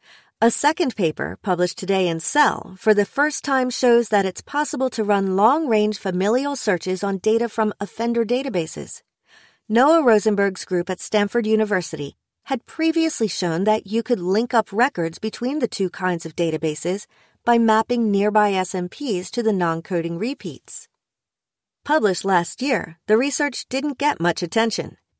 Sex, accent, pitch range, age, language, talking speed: female, American, 180-240 Hz, 40-59, English, 150 wpm